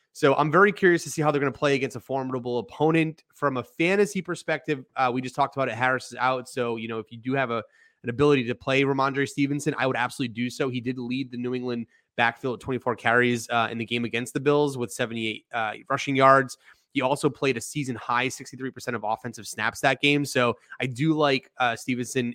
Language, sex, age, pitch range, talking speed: English, male, 30-49, 120-140 Hz, 235 wpm